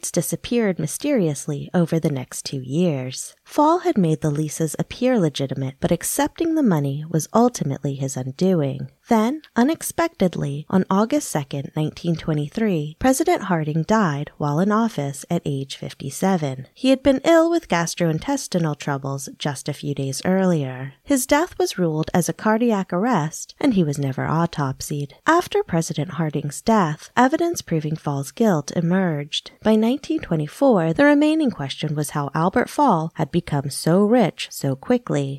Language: English